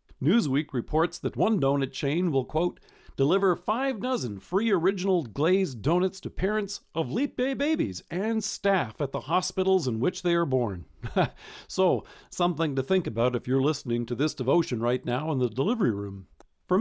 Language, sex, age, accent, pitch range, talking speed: English, male, 50-69, American, 130-180 Hz, 175 wpm